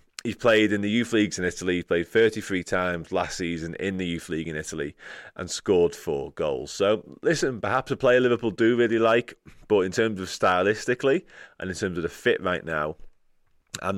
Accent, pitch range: British, 85-105 Hz